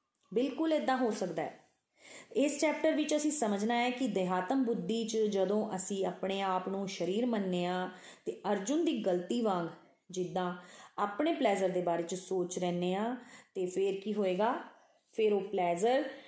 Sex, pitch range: female, 185-235 Hz